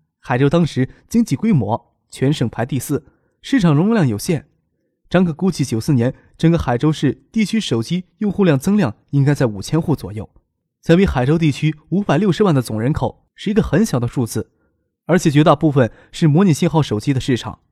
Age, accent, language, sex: 20-39, native, Chinese, male